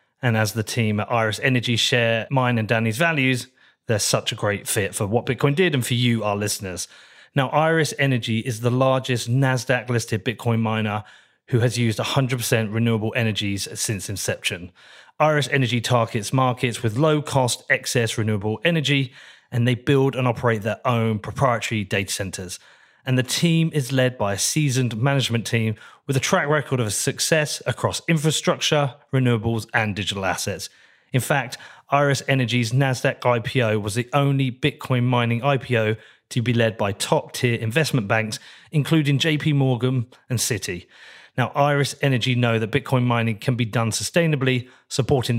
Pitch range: 115-135 Hz